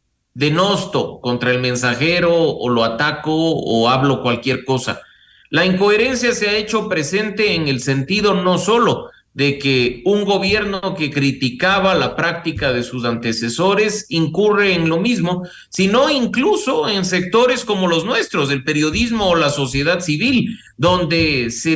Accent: Mexican